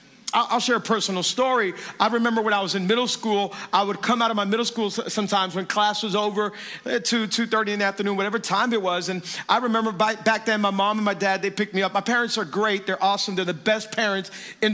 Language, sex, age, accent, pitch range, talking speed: English, male, 40-59, American, 200-230 Hz, 250 wpm